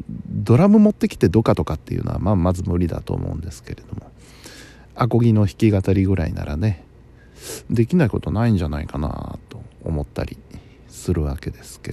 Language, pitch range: Japanese, 85-125 Hz